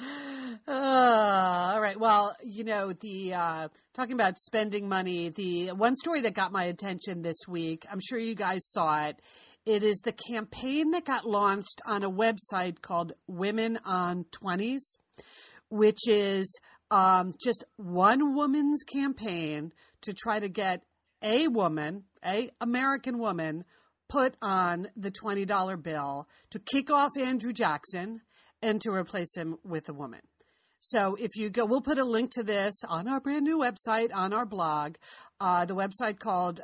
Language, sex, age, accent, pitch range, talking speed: English, female, 40-59, American, 180-235 Hz, 155 wpm